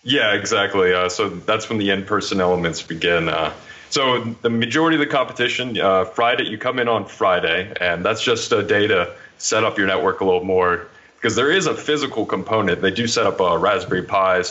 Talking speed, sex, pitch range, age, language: 205 wpm, male, 90-110 Hz, 20-39, English